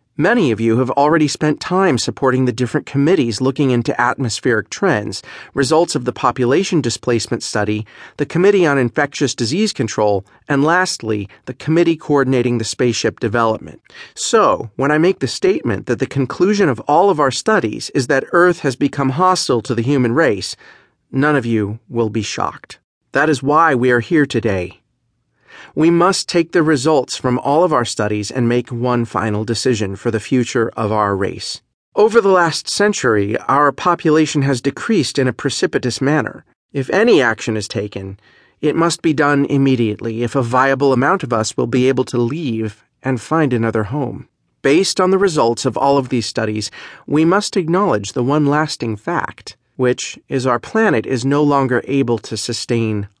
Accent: American